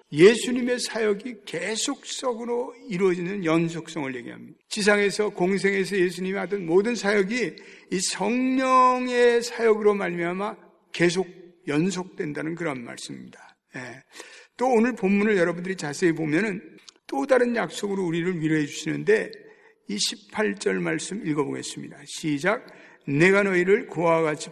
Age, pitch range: 60-79, 165-235 Hz